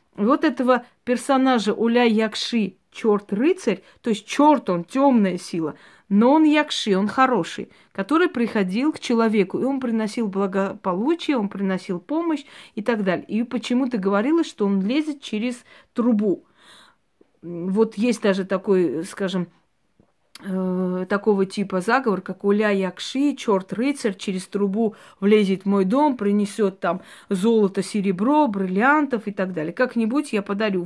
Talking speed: 135 wpm